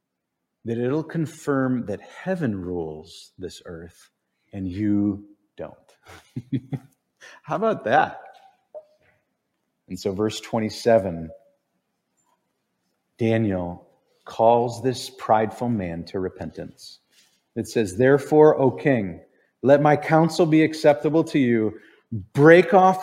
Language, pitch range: English, 105-150 Hz